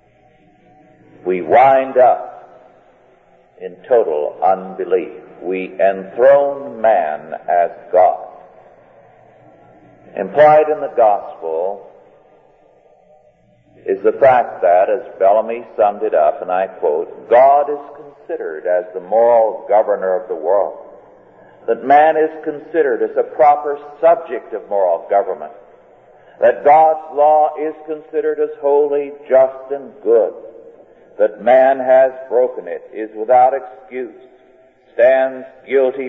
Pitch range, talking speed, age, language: 115-155 Hz, 115 wpm, 50-69, English